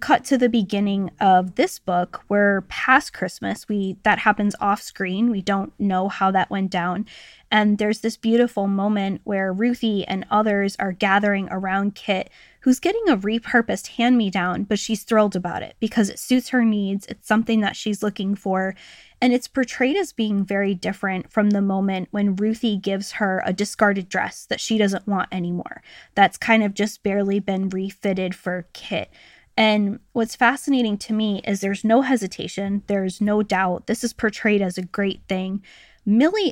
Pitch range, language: 195-225 Hz, English